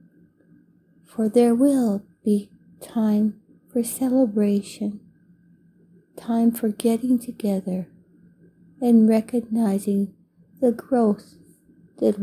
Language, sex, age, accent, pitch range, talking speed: English, female, 60-79, American, 175-220 Hz, 80 wpm